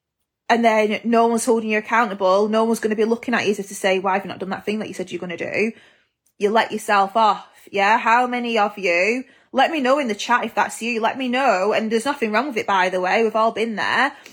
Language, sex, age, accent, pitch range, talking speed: English, female, 20-39, British, 200-235 Hz, 275 wpm